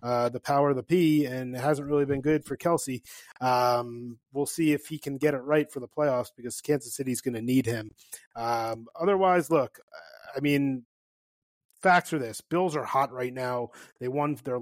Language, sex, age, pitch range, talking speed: English, male, 30-49, 125-160 Hz, 205 wpm